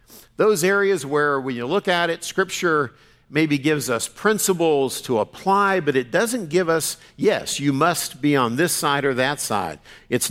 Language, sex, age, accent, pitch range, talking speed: English, male, 50-69, American, 130-180 Hz, 180 wpm